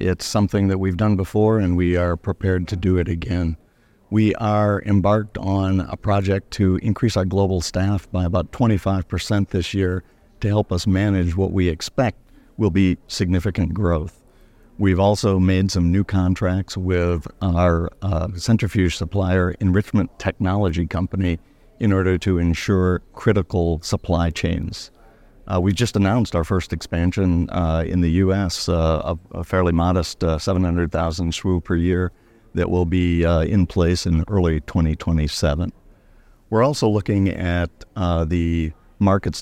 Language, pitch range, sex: English, 85-100 Hz, male